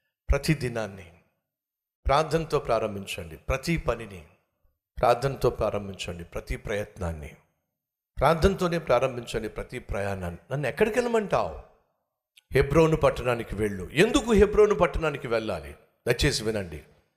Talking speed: 90 wpm